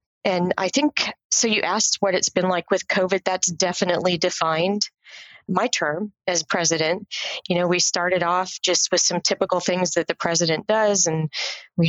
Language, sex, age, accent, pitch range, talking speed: English, female, 30-49, American, 165-190 Hz, 175 wpm